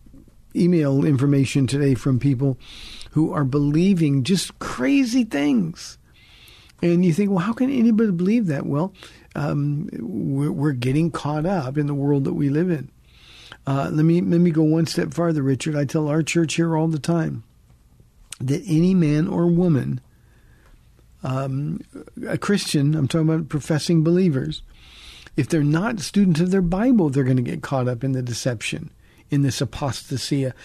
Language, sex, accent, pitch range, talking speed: English, male, American, 140-175 Hz, 165 wpm